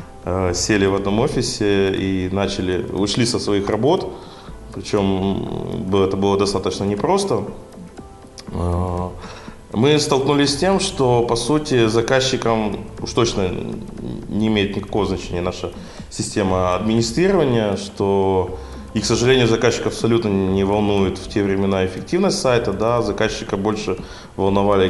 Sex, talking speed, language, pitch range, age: male, 120 wpm, Ukrainian, 95-110 Hz, 20-39